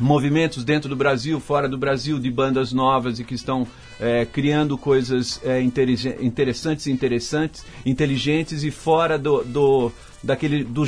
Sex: male